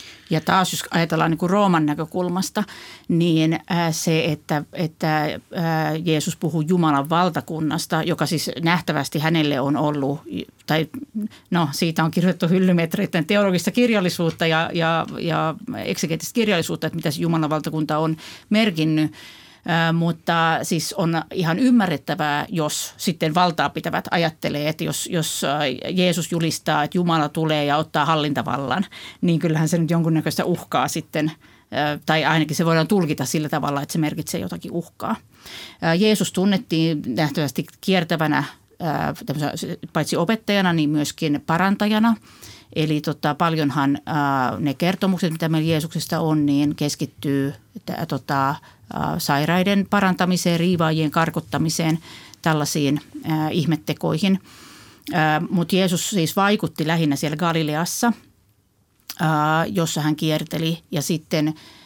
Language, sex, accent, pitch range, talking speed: Finnish, female, native, 155-175 Hz, 120 wpm